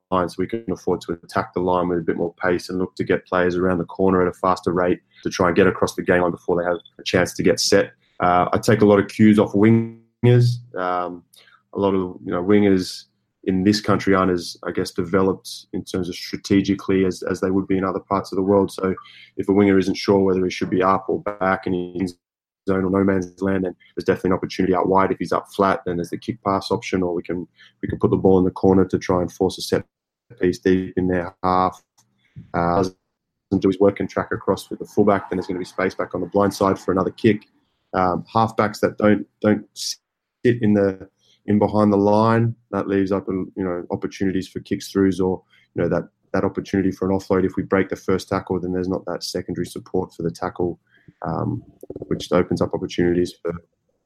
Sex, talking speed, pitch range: male, 240 wpm, 90-100 Hz